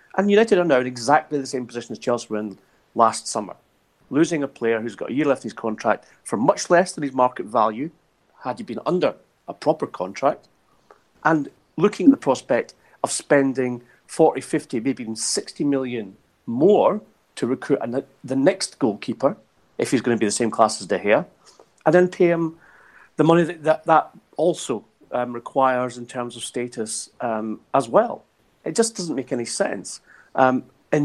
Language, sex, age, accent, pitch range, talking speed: English, male, 40-59, British, 115-155 Hz, 185 wpm